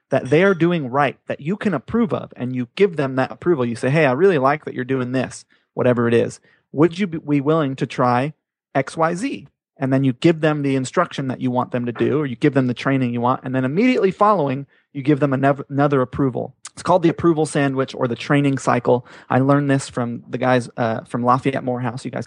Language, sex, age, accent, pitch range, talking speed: English, male, 30-49, American, 130-165 Hz, 235 wpm